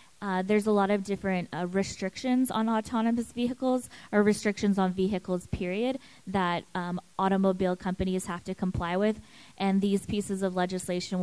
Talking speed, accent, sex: 155 wpm, American, female